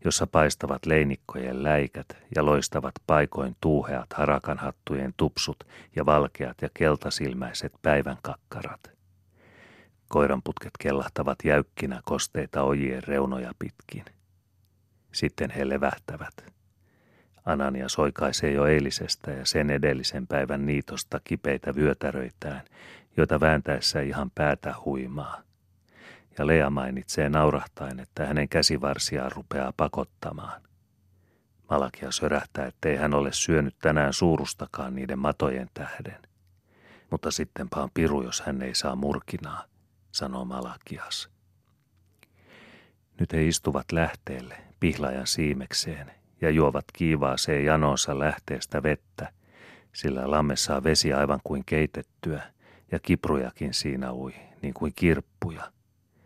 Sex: male